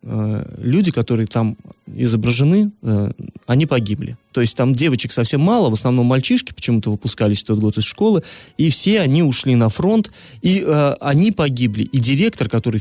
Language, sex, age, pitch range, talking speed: Russian, male, 20-39, 115-150 Hz, 160 wpm